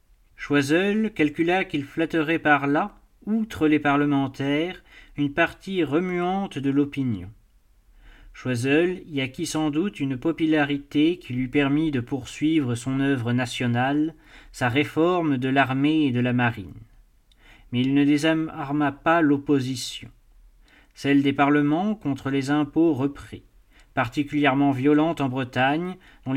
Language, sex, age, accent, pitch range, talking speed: French, male, 40-59, French, 130-160 Hz, 125 wpm